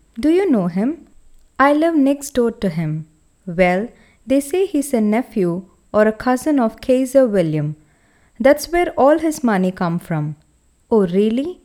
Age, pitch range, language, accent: 30-49, 185-275 Hz, English, Indian